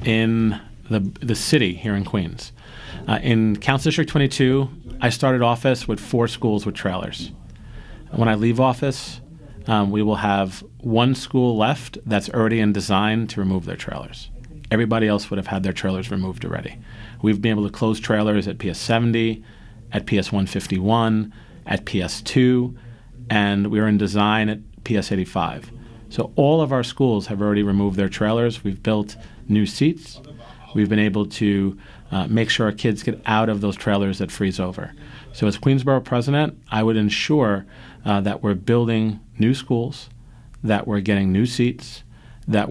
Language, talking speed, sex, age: English, 170 wpm, male, 40-59